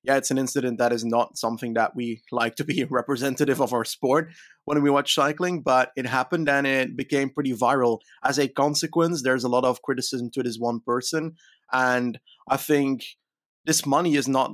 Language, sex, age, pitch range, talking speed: English, male, 30-49, 120-145 Hz, 200 wpm